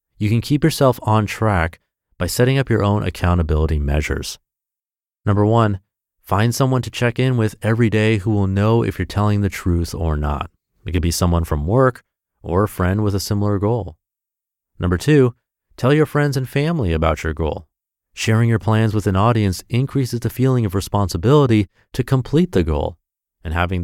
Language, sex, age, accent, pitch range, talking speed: English, male, 30-49, American, 85-115 Hz, 185 wpm